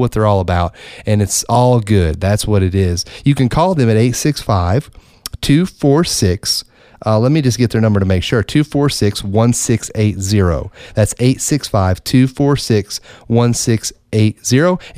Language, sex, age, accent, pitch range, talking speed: English, male, 30-49, American, 105-125 Hz, 120 wpm